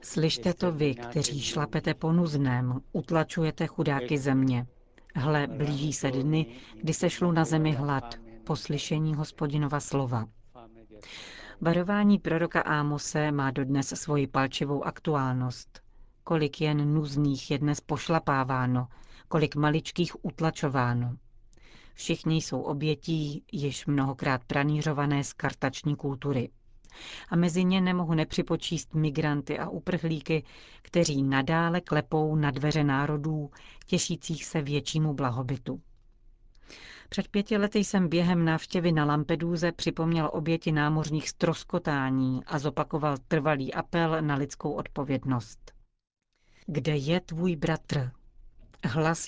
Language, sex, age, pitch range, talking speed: Czech, female, 40-59, 135-165 Hz, 110 wpm